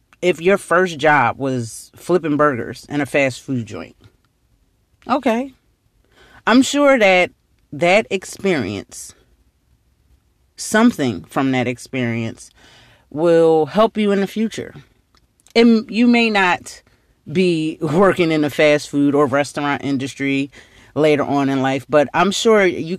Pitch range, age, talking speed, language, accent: 125-175 Hz, 30-49, 130 wpm, English, American